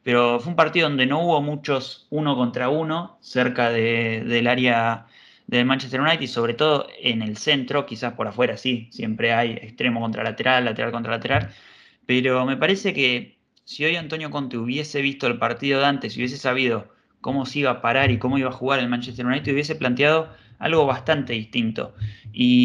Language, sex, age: Spanish, male, 20-39